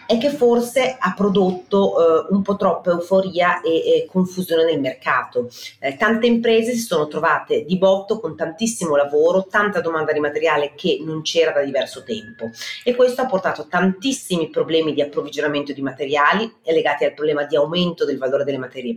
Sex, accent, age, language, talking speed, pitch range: female, native, 30-49, Italian, 175 wpm, 155-225 Hz